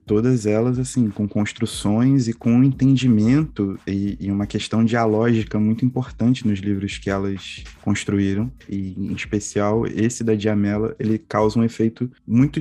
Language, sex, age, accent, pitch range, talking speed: Portuguese, male, 20-39, Brazilian, 100-125 Hz, 150 wpm